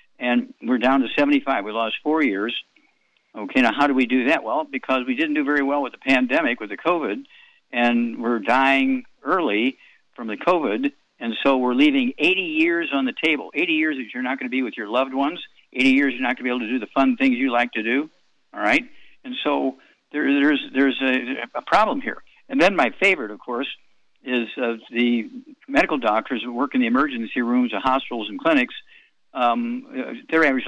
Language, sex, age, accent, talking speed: English, male, 60-79, American, 215 wpm